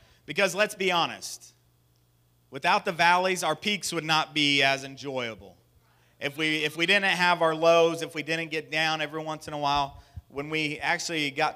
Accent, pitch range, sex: American, 135-165 Hz, male